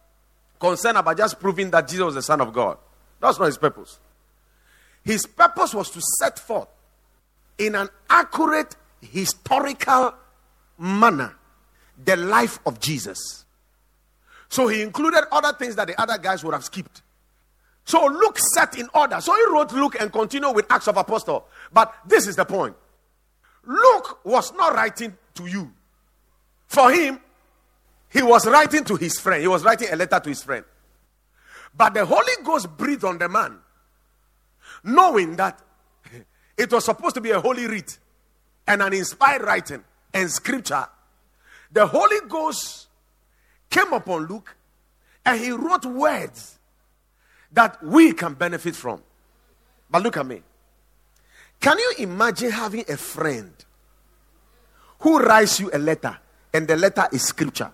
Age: 50-69